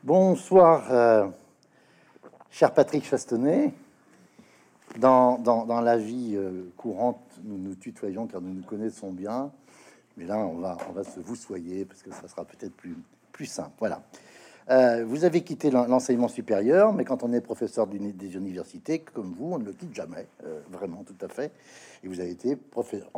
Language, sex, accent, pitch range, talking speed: French, male, French, 105-145 Hz, 175 wpm